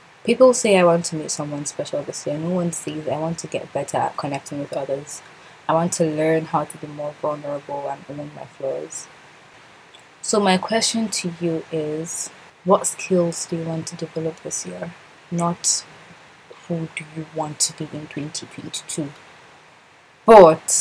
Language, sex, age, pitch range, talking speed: English, female, 20-39, 155-175 Hz, 170 wpm